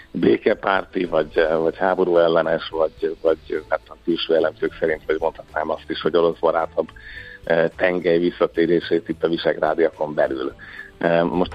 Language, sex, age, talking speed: Hungarian, male, 50-69, 135 wpm